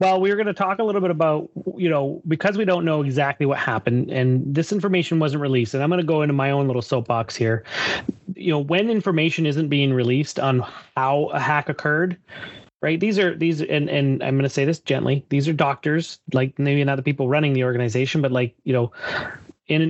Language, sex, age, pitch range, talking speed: English, male, 30-49, 130-160 Hz, 225 wpm